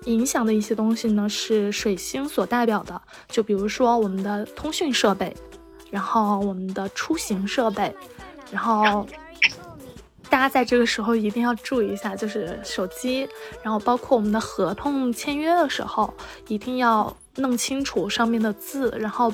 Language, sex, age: Chinese, female, 20-39